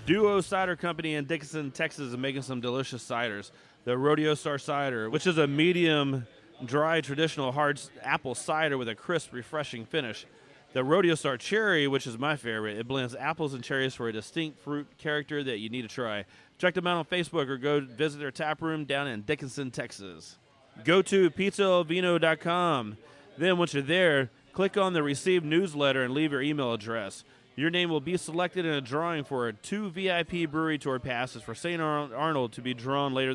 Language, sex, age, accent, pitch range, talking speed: English, male, 30-49, American, 125-160 Hz, 195 wpm